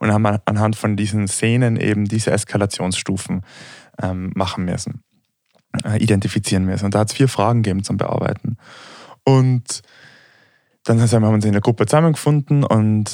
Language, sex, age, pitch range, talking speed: German, male, 20-39, 100-120 Hz, 145 wpm